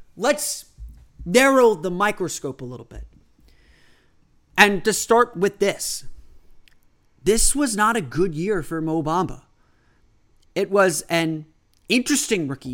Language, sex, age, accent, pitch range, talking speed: English, male, 30-49, American, 135-195 Hz, 120 wpm